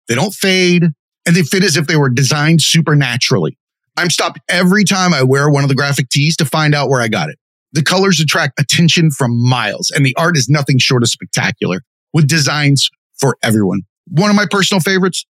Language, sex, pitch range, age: English, male, 135-185 Hz, 30-49